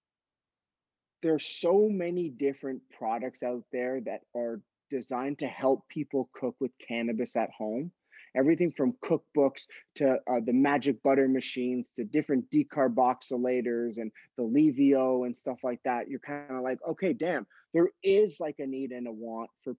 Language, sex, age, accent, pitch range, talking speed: English, male, 20-39, American, 125-150 Hz, 160 wpm